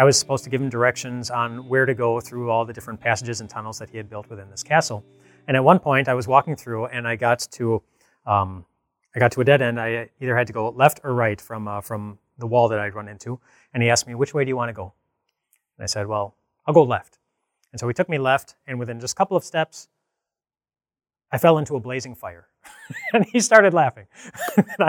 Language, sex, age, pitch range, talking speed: English, male, 30-49, 120-160 Hz, 250 wpm